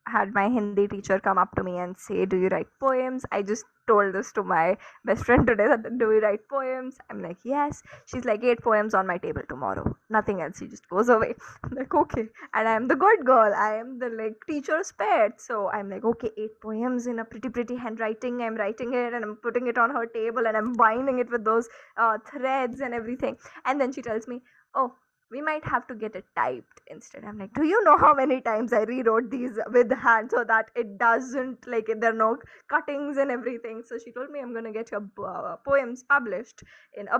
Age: 20-39